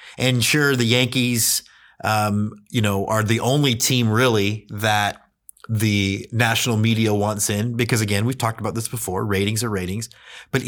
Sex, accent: male, American